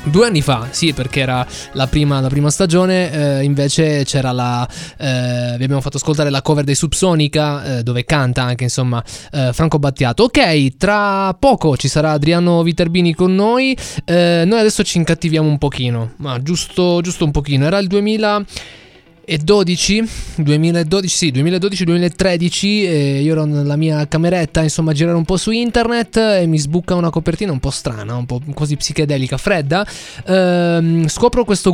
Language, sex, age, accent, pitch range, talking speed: Italian, male, 20-39, native, 145-190 Hz, 165 wpm